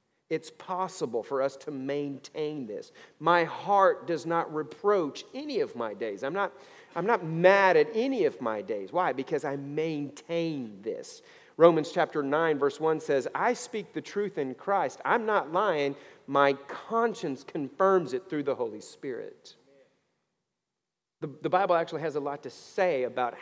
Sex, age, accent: male, 40-59, American